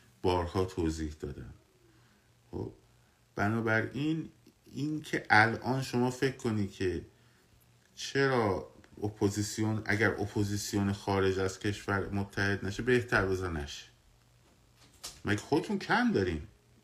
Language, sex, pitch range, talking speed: Persian, male, 95-120 Hz, 95 wpm